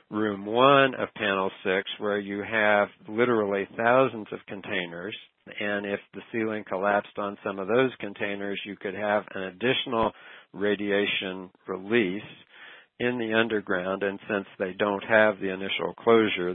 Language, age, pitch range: English, 60-79, 95-105 Hz